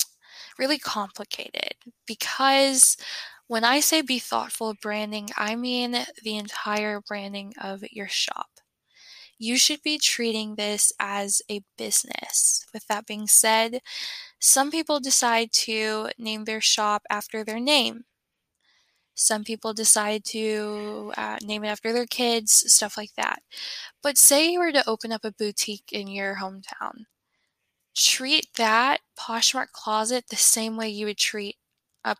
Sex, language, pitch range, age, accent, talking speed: female, English, 210-245 Hz, 10-29, American, 140 wpm